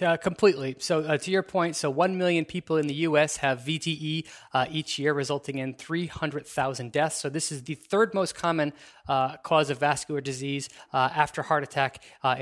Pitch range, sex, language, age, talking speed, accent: 135-165 Hz, male, English, 20-39, 195 wpm, American